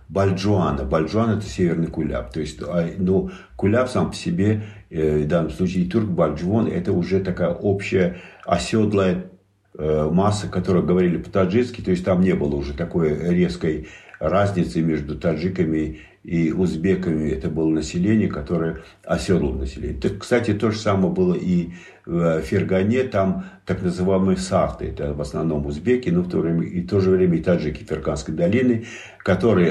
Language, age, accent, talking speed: Russian, 50-69, native, 155 wpm